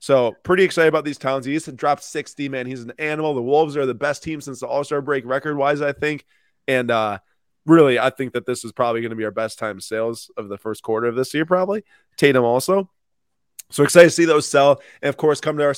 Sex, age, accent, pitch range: male, 20-39, American, 120-145 Hz